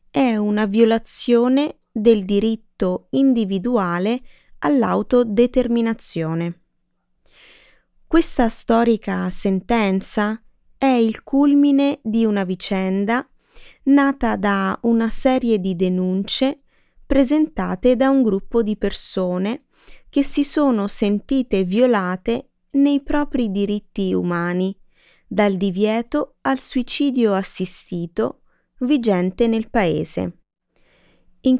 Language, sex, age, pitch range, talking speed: Italian, female, 20-39, 195-255 Hz, 85 wpm